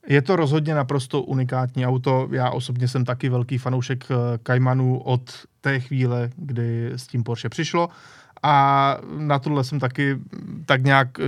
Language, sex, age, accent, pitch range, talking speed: Czech, male, 20-39, native, 125-160 Hz, 150 wpm